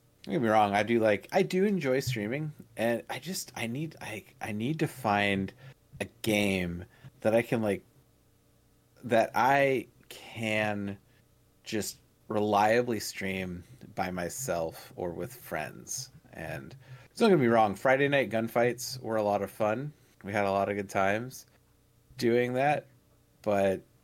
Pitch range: 95-125 Hz